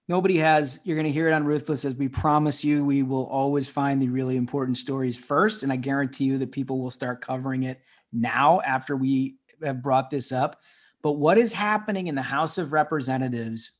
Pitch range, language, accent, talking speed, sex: 130-160 Hz, English, American, 210 wpm, male